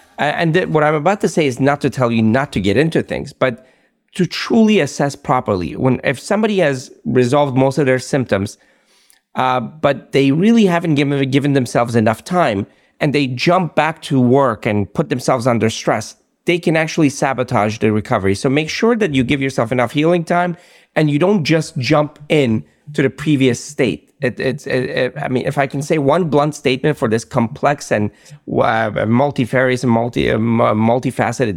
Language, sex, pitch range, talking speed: English, male, 130-165 Hz, 190 wpm